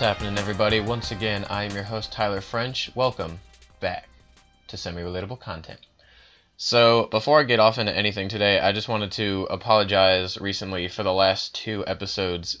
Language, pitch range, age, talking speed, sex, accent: English, 90-110 Hz, 20-39, 165 wpm, male, American